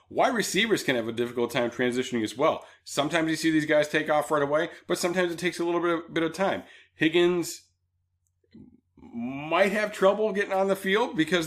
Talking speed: 205 wpm